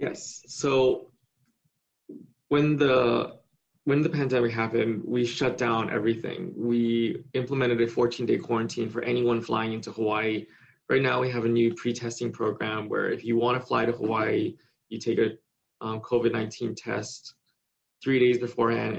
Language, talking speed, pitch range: English, 150 wpm, 110-125 Hz